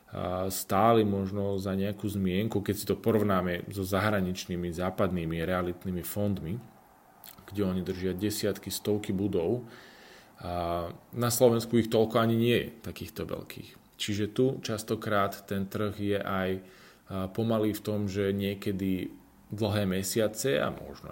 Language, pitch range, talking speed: Slovak, 95-110 Hz, 130 wpm